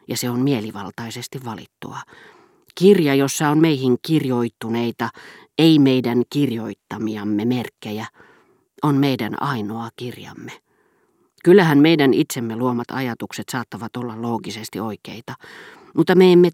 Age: 40-59